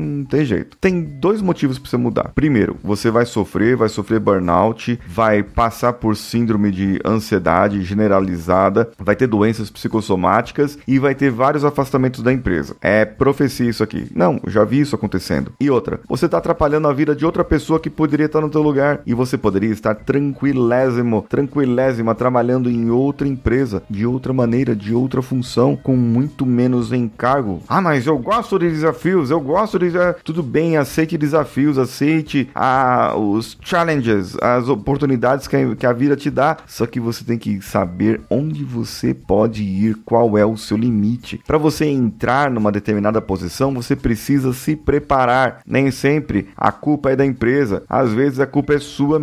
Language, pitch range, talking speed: Portuguese, 110-145 Hz, 175 wpm